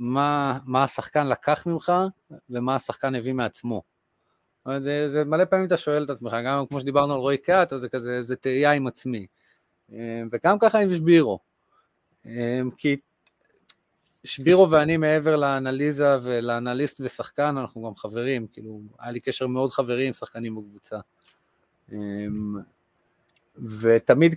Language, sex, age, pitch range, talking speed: Hebrew, male, 30-49, 120-155 Hz, 130 wpm